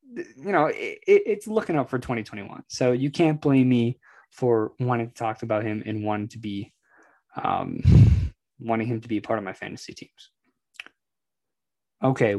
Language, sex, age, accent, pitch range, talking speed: English, male, 20-39, American, 120-160 Hz, 170 wpm